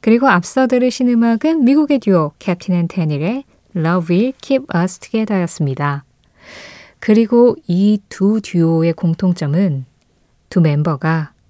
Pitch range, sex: 165-230 Hz, female